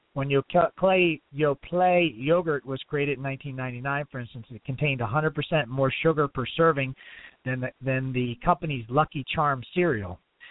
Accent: American